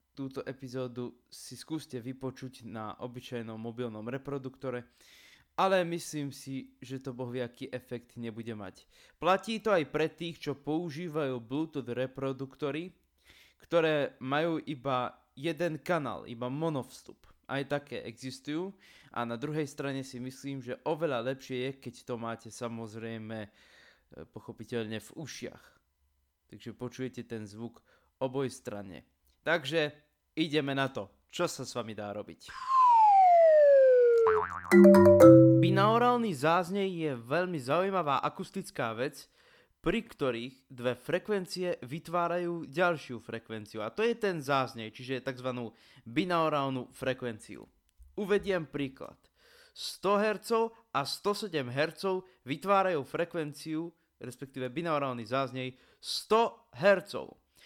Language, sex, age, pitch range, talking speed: Slovak, male, 20-39, 125-170 Hz, 110 wpm